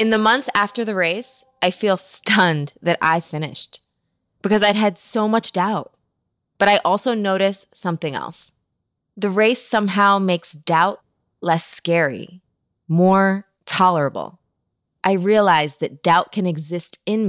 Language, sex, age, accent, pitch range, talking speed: English, female, 20-39, American, 165-205 Hz, 140 wpm